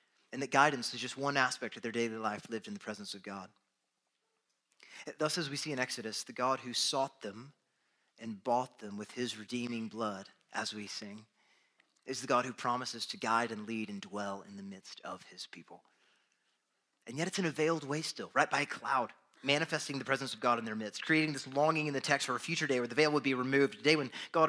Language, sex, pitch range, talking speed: English, male, 115-145 Hz, 235 wpm